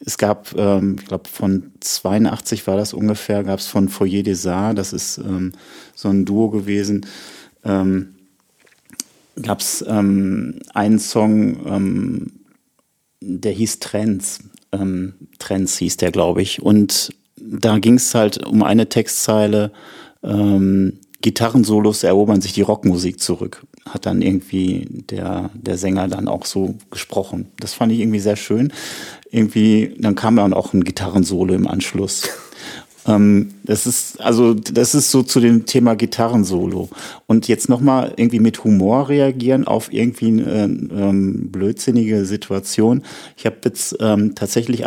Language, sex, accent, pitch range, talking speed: German, male, German, 95-115 Hz, 140 wpm